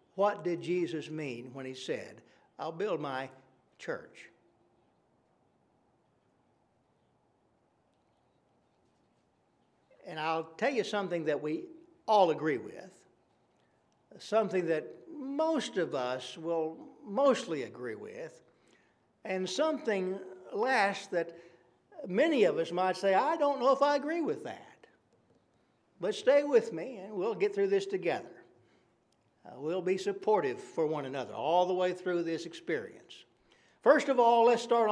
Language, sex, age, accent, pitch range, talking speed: English, male, 60-79, American, 160-235 Hz, 130 wpm